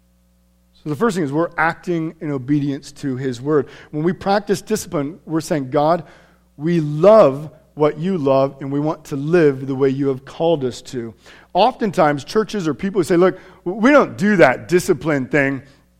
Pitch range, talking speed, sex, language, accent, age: 110-165 Hz, 185 wpm, male, English, American, 40-59